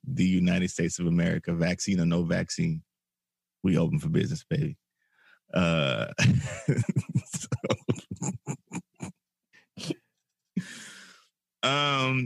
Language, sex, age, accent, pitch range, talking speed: English, male, 20-39, American, 75-105 Hz, 80 wpm